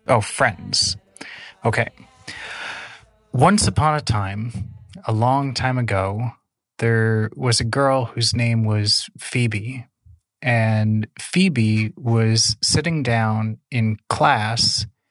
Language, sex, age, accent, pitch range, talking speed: English, male, 30-49, American, 110-135 Hz, 105 wpm